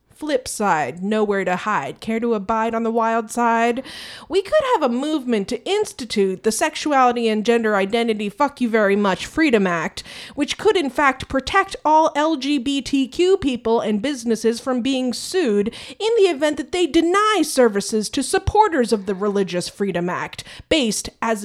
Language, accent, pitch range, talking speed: English, American, 215-300 Hz, 165 wpm